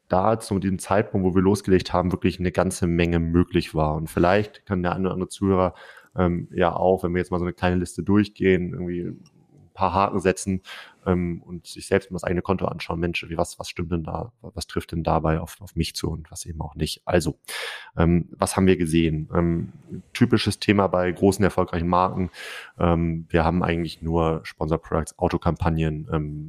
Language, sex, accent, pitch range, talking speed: German, male, German, 85-95 Hz, 200 wpm